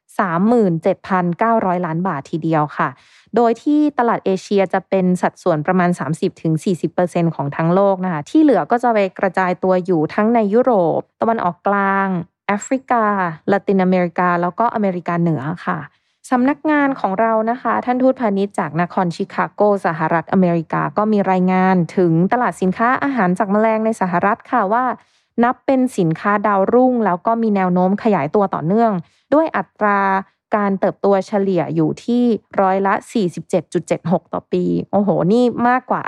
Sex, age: female, 20-39